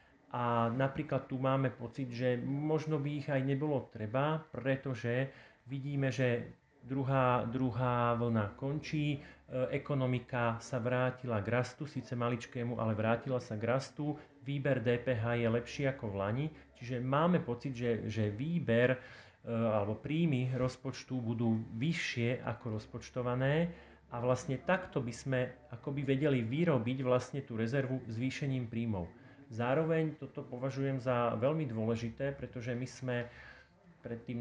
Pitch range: 120-140 Hz